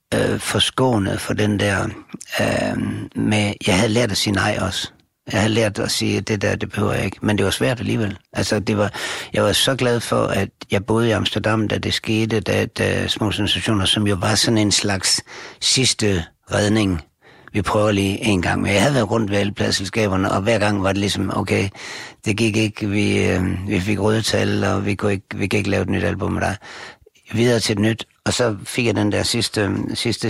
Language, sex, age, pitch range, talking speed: Danish, male, 60-79, 95-110 Hz, 220 wpm